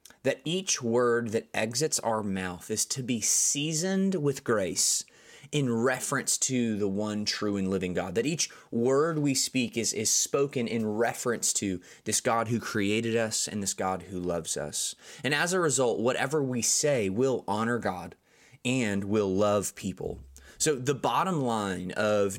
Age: 20-39